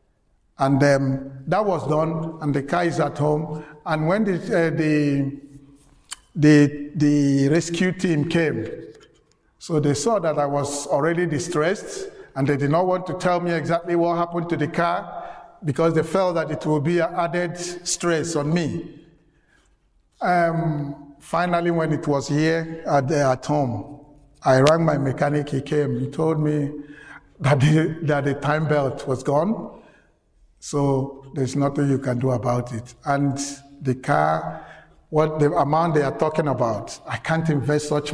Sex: male